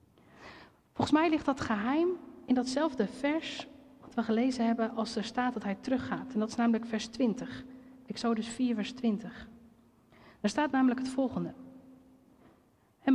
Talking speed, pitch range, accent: 155 wpm, 225-275 Hz, Dutch